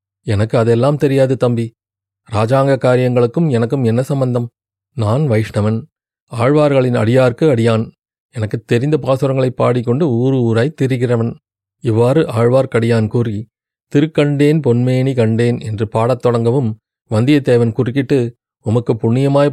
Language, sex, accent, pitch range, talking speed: Tamil, male, native, 110-140 Hz, 105 wpm